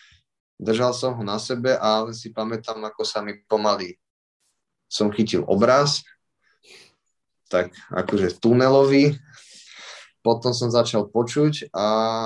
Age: 30-49